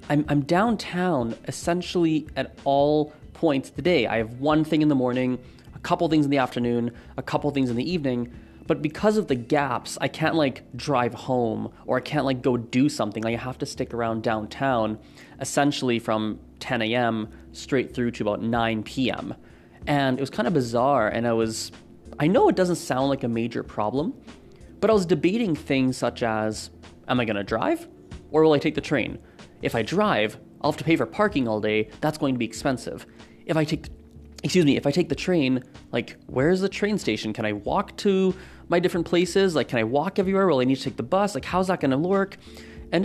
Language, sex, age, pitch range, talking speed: English, male, 20-39, 115-155 Hz, 215 wpm